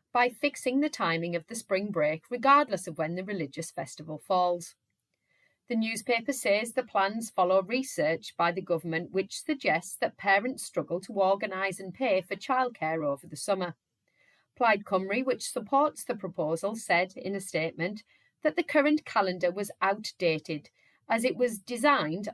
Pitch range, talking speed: 170-250 Hz, 160 wpm